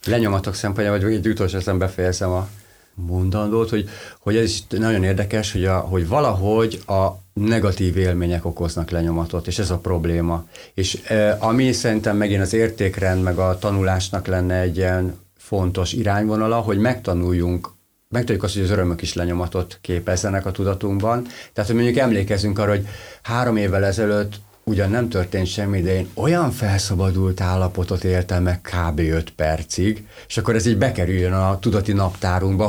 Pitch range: 90-110 Hz